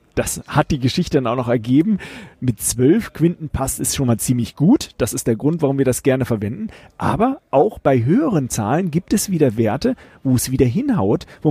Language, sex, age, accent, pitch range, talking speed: German, male, 40-59, German, 135-170 Hz, 210 wpm